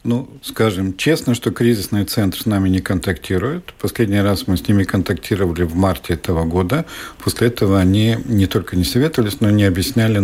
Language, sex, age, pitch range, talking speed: Russian, male, 50-69, 95-115 Hz, 180 wpm